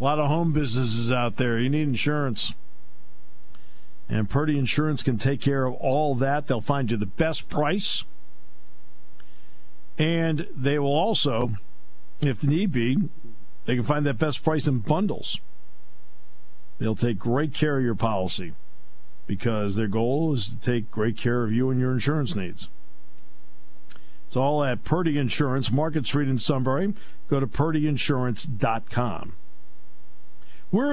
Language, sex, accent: English, male, American